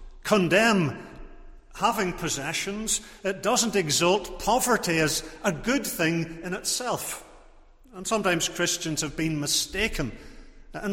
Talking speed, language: 110 wpm, English